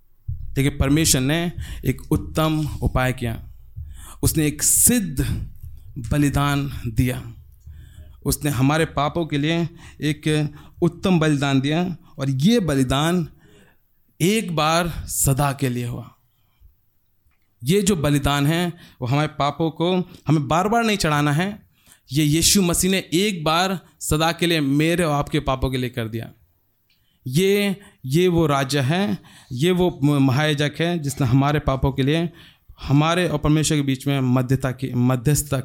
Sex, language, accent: male, Hindi, native